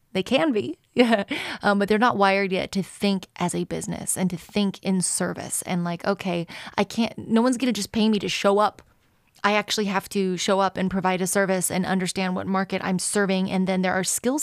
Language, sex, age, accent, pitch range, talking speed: English, female, 20-39, American, 190-235 Hz, 230 wpm